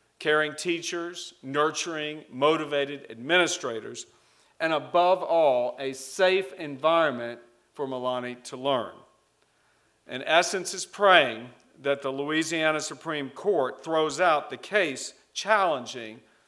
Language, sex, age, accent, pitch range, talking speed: English, male, 50-69, American, 135-165 Hz, 105 wpm